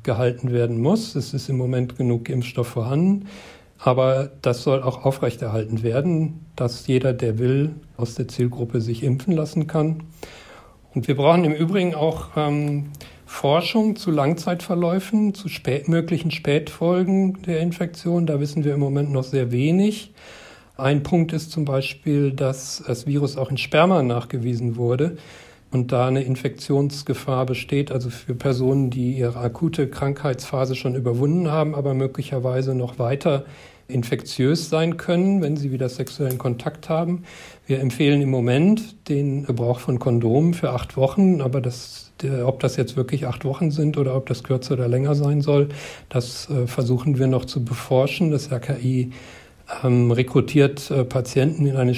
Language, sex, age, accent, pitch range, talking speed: German, male, 40-59, German, 125-155 Hz, 150 wpm